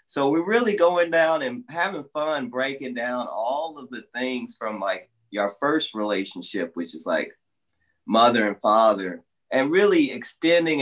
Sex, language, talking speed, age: male, English, 155 wpm, 30-49